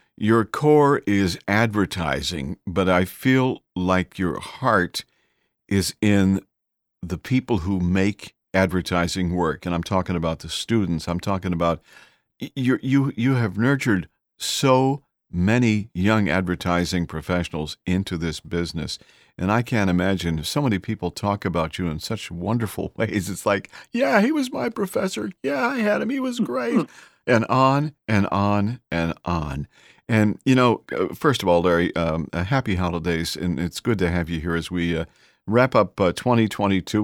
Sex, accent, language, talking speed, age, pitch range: male, American, English, 160 wpm, 50-69, 85-110 Hz